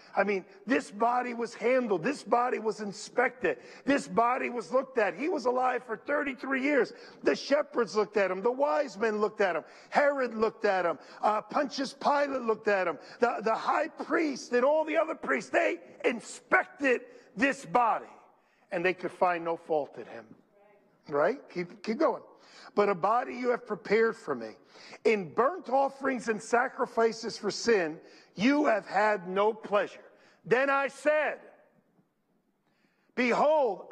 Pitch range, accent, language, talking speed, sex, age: 215-285 Hz, American, English, 160 wpm, male, 50-69